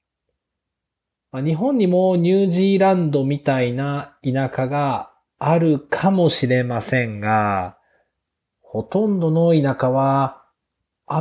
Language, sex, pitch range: Japanese, male, 115-160 Hz